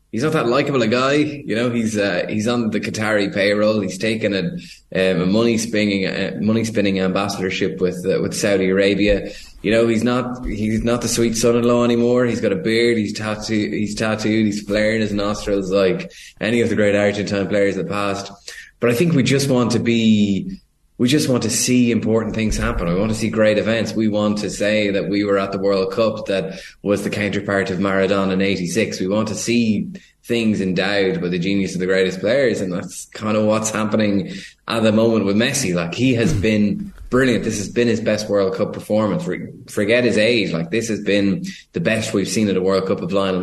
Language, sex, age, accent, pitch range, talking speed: English, male, 20-39, Irish, 95-115 Hz, 220 wpm